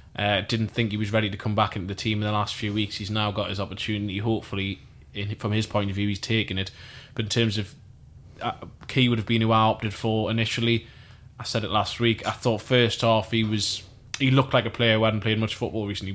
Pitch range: 100-115 Hz